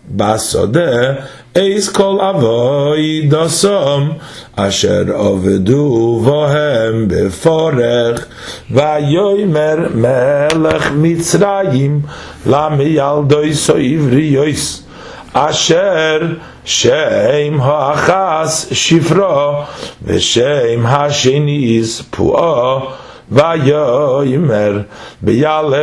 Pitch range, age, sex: 125-155 Hz, 50-69, male